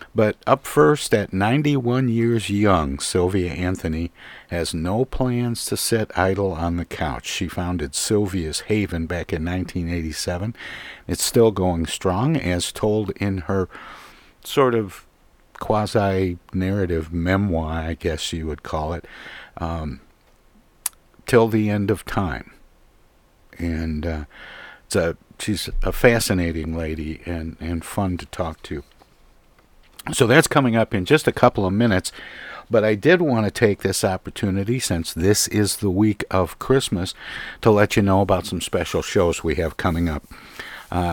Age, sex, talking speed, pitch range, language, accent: 60-79, male, 145 wpm, 85-110 Hz, English, American